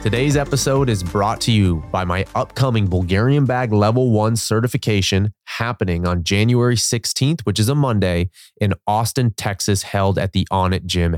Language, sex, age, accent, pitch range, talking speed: English, male, 20-39, American, 95-120 Hz, 160 wpm